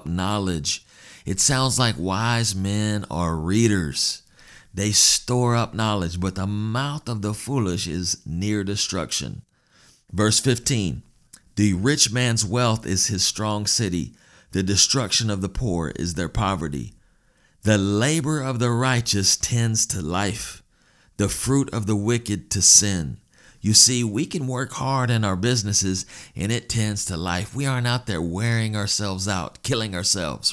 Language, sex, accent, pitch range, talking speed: English, male, American, 95-120 Hz, 150 wpm